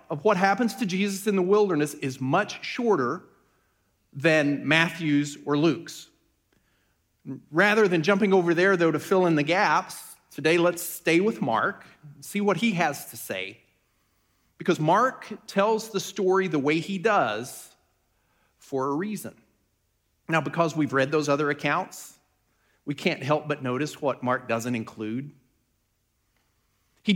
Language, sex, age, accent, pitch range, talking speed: English, male, 40-59, American, 125-200 Hz, 145 wpm